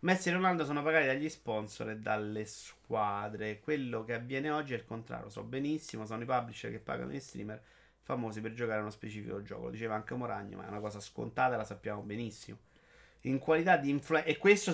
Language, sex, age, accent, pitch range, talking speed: Italian, male, 30-49, native, 110-145 Hz, 210 wpm